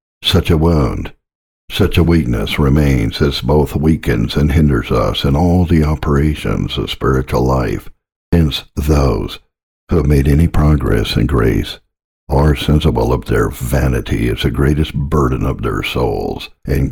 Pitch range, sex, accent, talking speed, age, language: 70-80 Hz, male, American, 150 wpm, 60-79, English